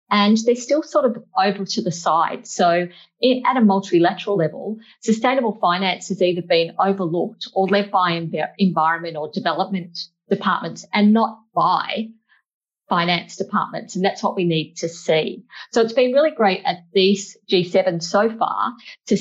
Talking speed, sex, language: 160 wpm, female, English